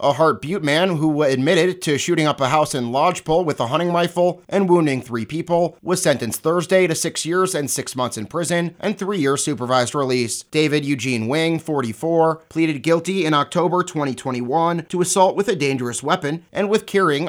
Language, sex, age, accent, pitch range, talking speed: English, male, 30-49, American, 135-175 Hz, 190 wpm